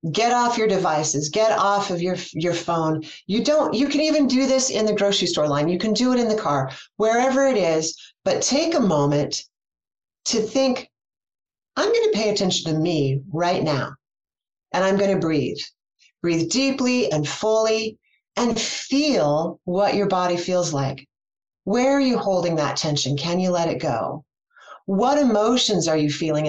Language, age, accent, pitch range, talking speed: English, 40-59, American, 160-215 Hz, 180 wpm